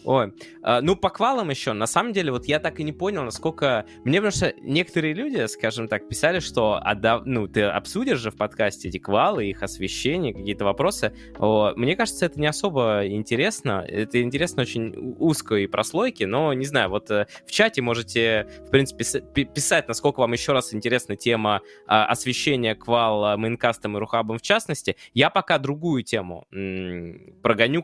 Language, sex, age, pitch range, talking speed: Russian, male, 20-39, 105-140 Hz, 165 wpm